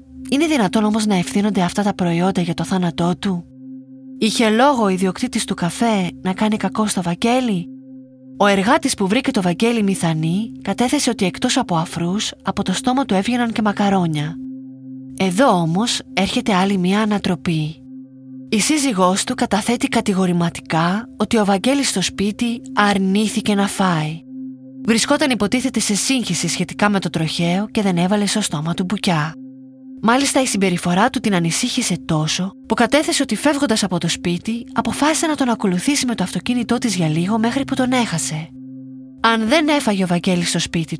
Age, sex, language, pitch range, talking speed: 30-49, female, Greek, 175-245 Hz, 160 wpm